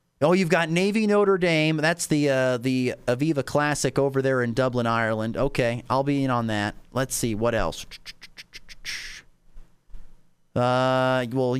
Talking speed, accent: 150 wpm, American